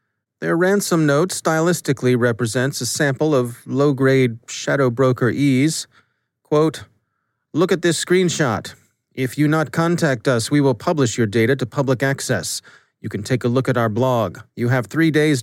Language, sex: English, male